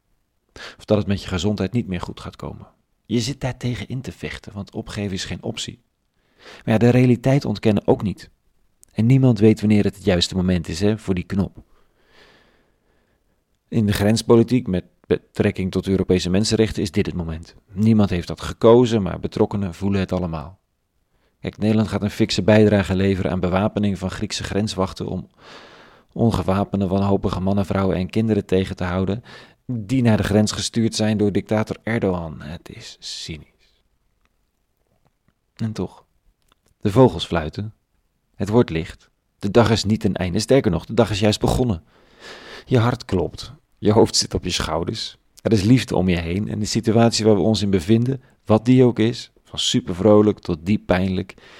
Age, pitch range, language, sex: 40-59, 95-110 Hz, Dutch, male